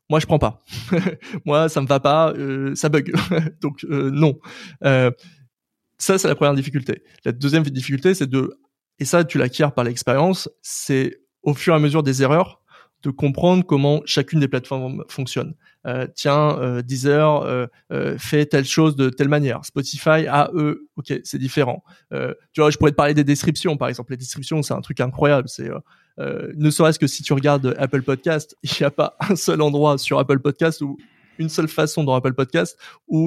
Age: 20-39